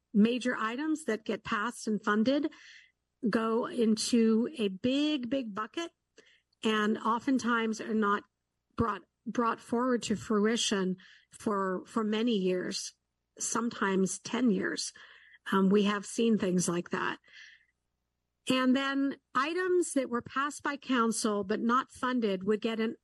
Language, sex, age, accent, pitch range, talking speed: English, female, 50-69, American, 200-245 Hz, 130 wpm